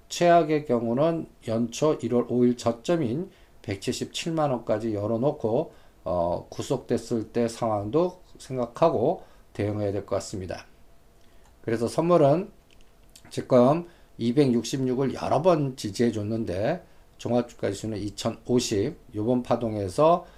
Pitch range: 110-150 Hz